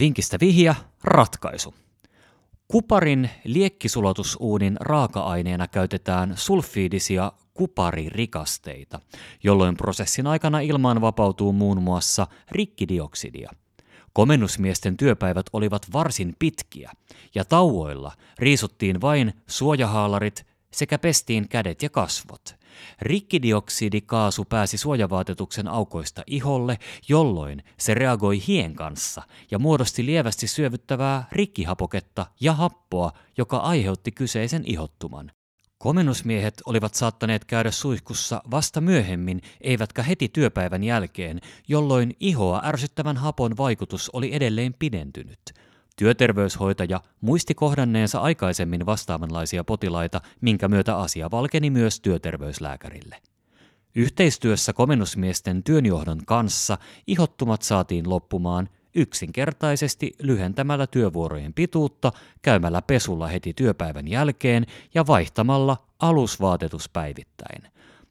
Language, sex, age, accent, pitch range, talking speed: Finnish, male, 30-49, native, 95-135 Hz, 90 wpm